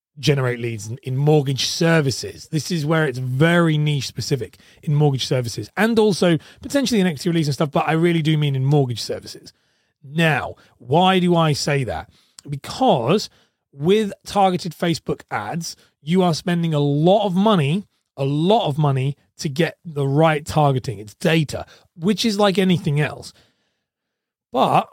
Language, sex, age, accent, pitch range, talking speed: English, male, 30-49, British, 140-175 Hz, 160 wpm